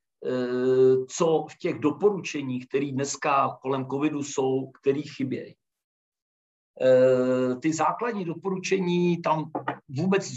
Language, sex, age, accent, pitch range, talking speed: Czech, male, 50-69, native, 130-155 Hz, 95 wpm